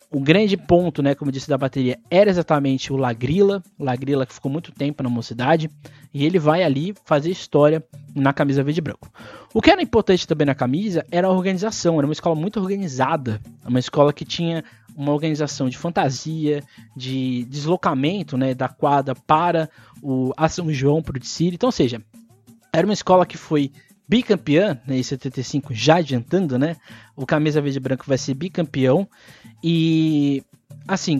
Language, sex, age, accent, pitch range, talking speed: Portuguese, male, 20-39, Brazilian, 130-175 Hz, 175 wpm